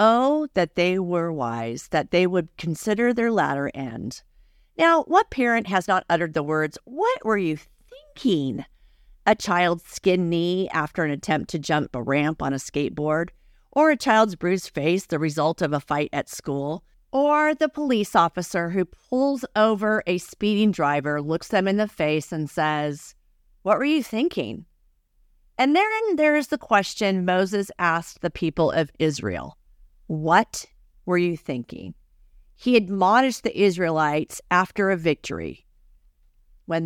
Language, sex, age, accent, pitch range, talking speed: English, female, 50-69, American, 155-215 Hz, 155 wpm